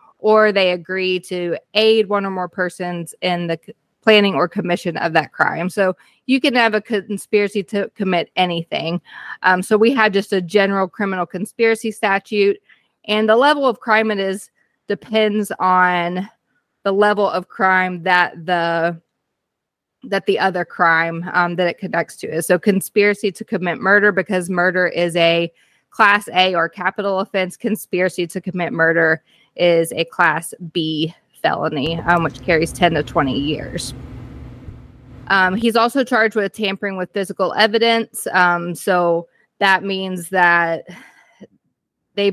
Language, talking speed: English, 150 wpm